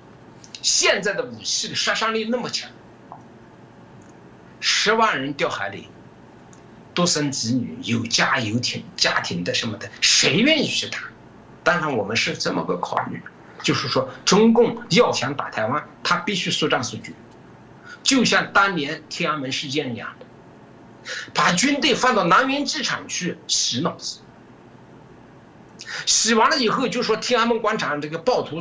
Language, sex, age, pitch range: Chinese, male, 60-79, 160-265 Hz